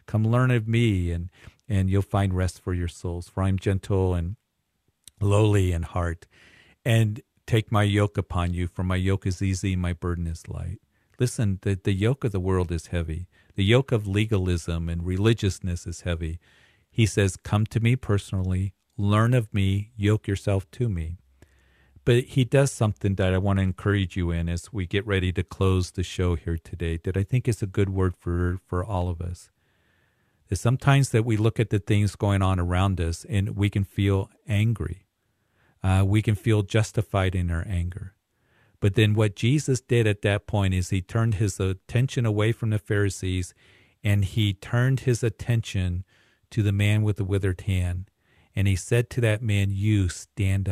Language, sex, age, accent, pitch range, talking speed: English, male, 50-69, American, 90-110 Hz, 190 wpm